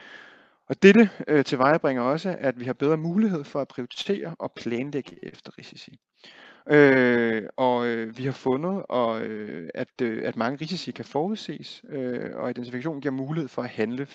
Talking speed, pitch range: 180 wpm, 130-170 Hz